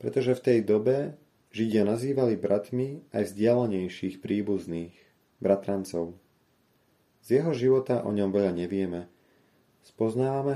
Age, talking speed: 30-49, 110 wpm